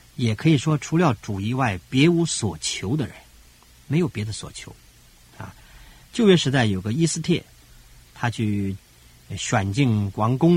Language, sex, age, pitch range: Chinese, male, 50-69, 85-140 Hz